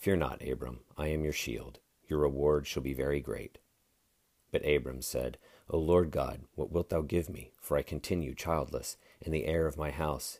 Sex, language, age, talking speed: male, English, 40-59, 195 wpm